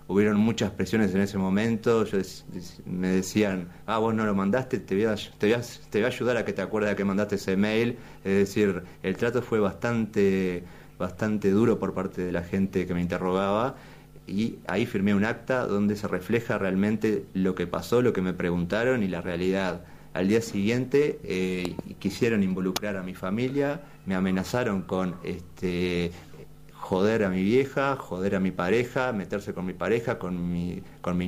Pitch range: 95-115 Hz